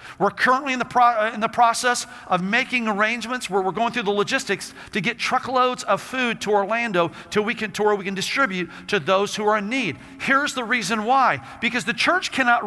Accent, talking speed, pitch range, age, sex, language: American, 205 wpm, 170-235 Hz, 50-69, male, English